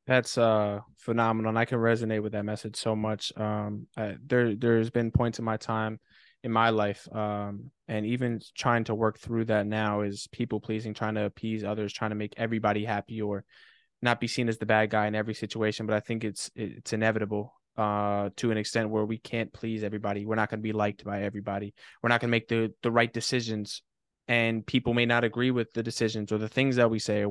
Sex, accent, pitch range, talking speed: male, American, 110-120 Hz, 230 wpm